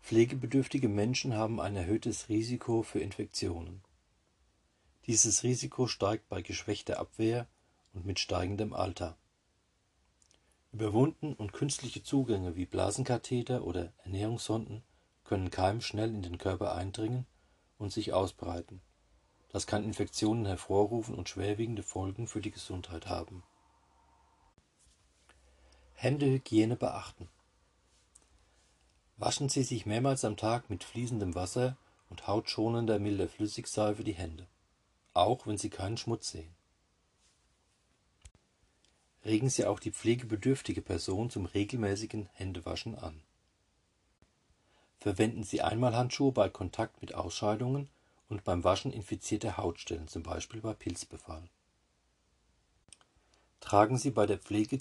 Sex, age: male, 40-59